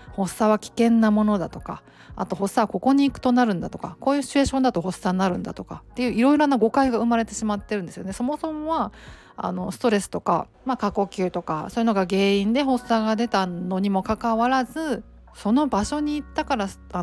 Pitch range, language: 180-240 Hz, Japanese